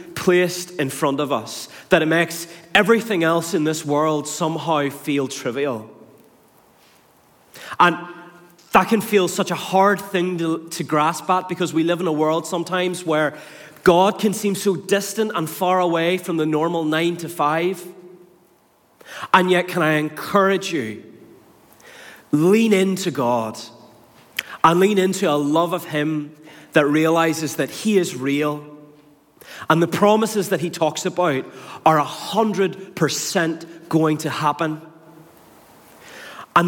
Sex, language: male, English